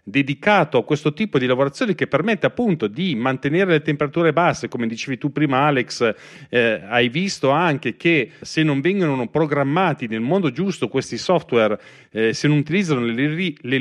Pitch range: 125-175 Hz